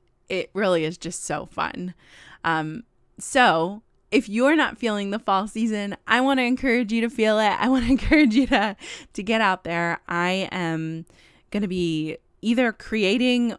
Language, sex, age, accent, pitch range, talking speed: English, female, 20-39, American, 155-210 Hz, 175 wpm